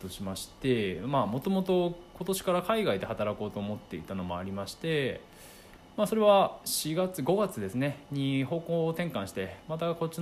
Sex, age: male, 20-39